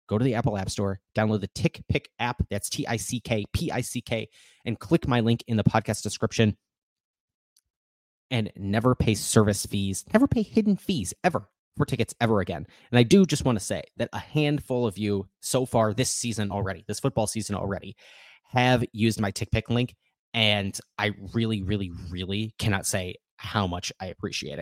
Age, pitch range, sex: 30-49, 95-115 Hz, male